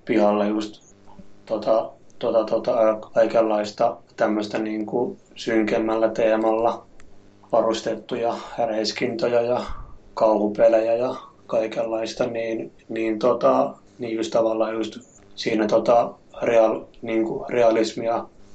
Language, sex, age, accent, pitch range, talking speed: Finnish, male, 30-49, native, 105-115 Hz, 85 wpm